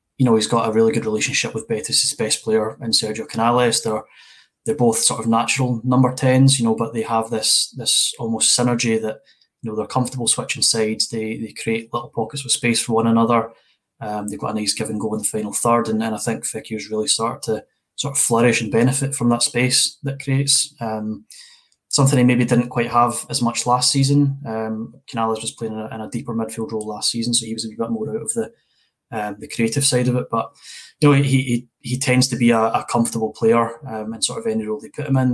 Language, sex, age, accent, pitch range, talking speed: English, male, 20-39, British, 110-125 Hz, 240 wpm